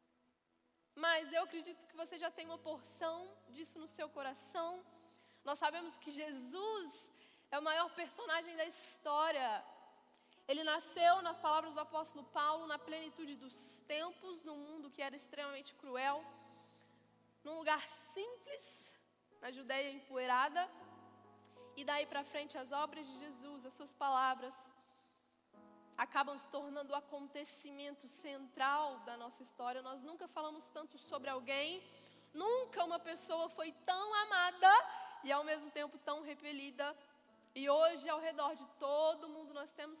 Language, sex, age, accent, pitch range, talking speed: Gujarati, female, 10-29, Brazilian, 275-330 Hz, 140 wpm